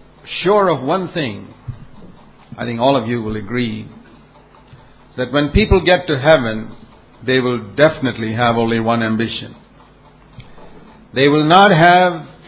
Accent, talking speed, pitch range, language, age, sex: Indian, 135 wpm, 120-150 Hz, English, 50-69, male